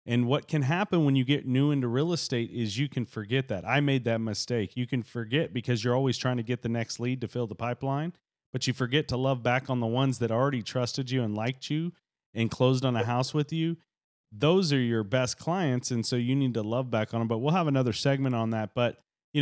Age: 40-59